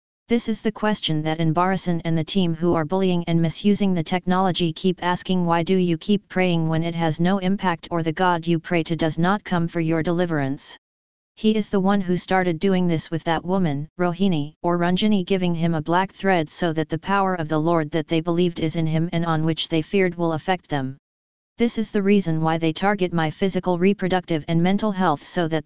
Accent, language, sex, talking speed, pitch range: American, English, female, 220 wpm, 160-190 Hz